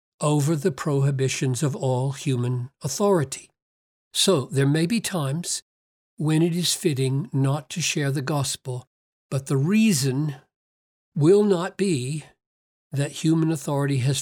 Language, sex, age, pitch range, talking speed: English, male, 60-79, 135-180 Hz, 130 wpm